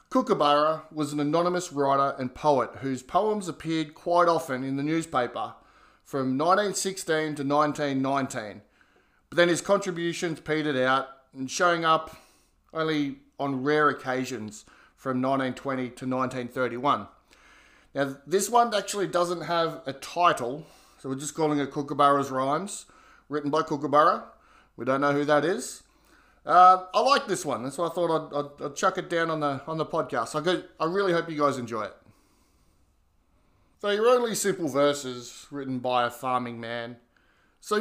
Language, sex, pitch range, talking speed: English, male, 130-170 Hz, 155 wpm